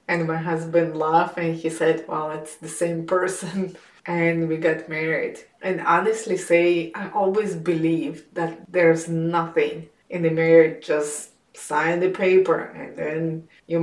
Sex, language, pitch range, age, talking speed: female, English, 160-175 Hz, 20-39, 150 wpm